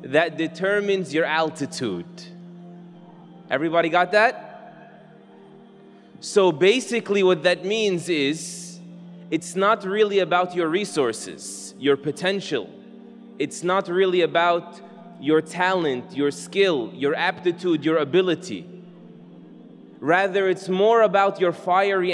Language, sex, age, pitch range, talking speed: English, male, 20-39, 170-195 Hz, 105 wpm